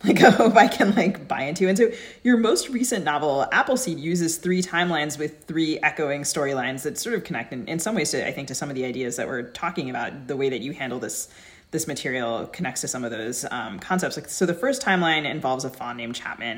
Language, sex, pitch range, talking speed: English, female, 130-170 Hz, 245 wpm